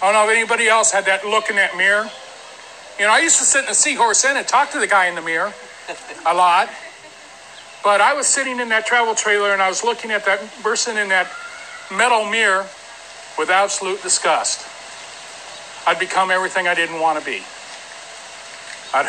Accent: American